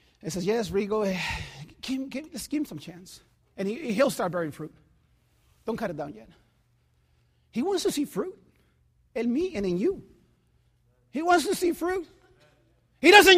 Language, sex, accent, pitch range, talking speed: English, male, American, 225-340 Hz, 175 wpm